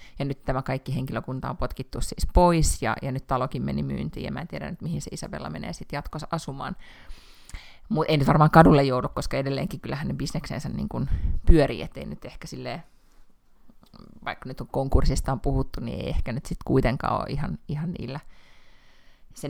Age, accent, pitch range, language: 30-49, native, 130-165 Hz, Finnish